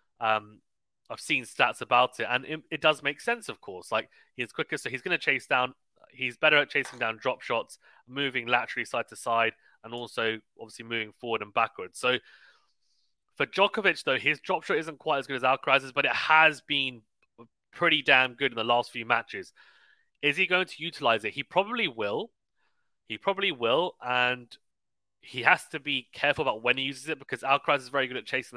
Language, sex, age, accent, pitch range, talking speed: English, male, 30-49, British, 120-155 Hz, 205 wpm